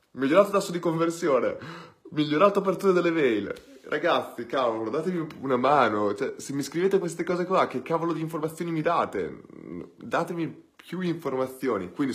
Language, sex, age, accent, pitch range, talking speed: Italian, male, 20-39, native, 110-160 Hz, 150 wpm